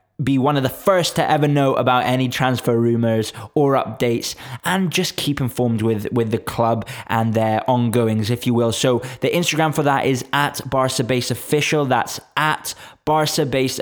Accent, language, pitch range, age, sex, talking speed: British, English, 120-150 Hz, 20-39, male, 180 wpm